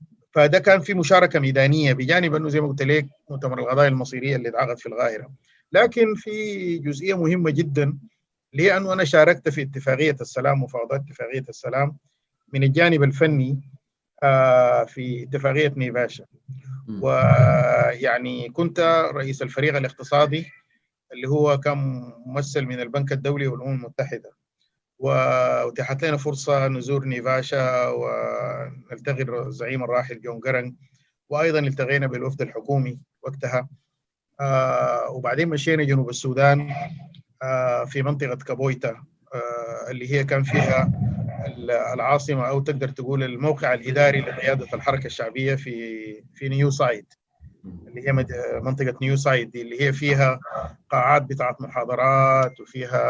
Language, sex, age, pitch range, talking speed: Arabic, male, 50-69, 130-145 Hz, 115 wpm